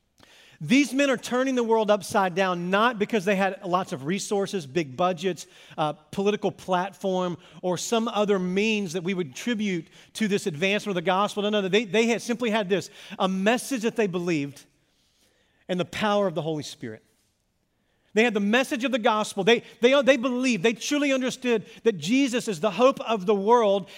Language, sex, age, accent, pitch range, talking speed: English, male, 40-59, American, 185-235 Hz, 190 wpm